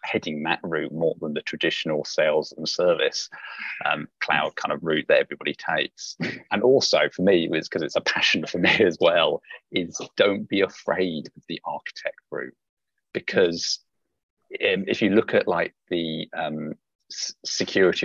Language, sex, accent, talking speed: English, male, British, 165 wpm